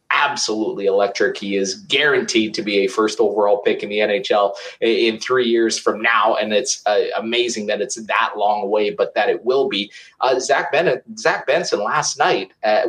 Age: 30-49